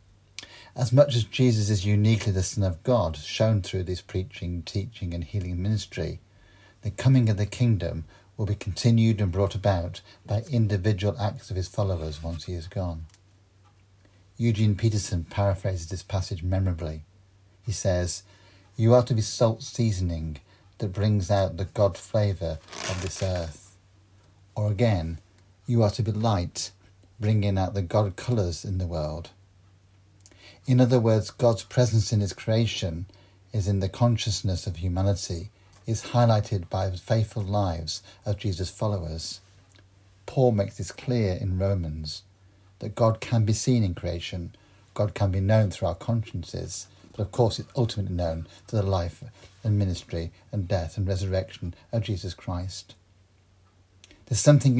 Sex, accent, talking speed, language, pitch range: male, British, 155 wpm, English, 95-110 Hz